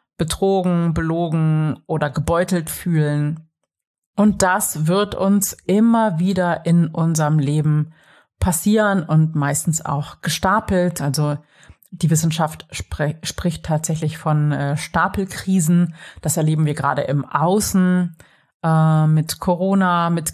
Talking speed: 110 wpm